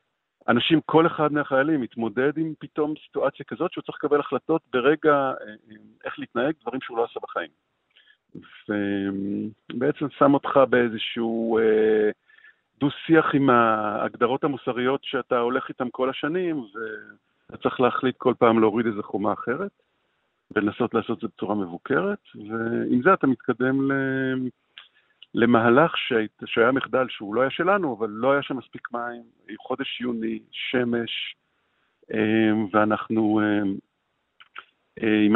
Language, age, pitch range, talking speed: Hebrew, 50-69, 110-135 Hz, 120 wpm